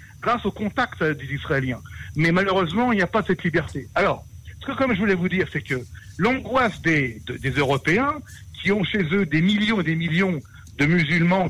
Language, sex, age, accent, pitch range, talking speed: French, male, 60-79, French, 150-220 Hz, 205 wpm